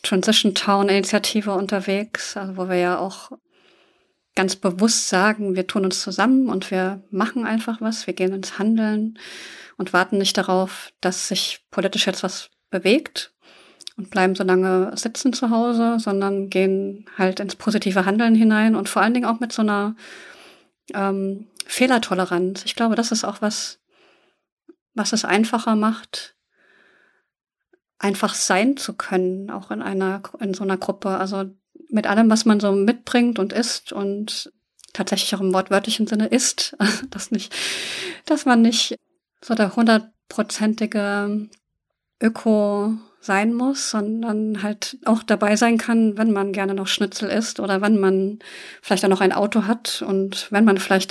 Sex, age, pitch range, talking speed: female, 30-49, 195-225 Hz, 150 wpm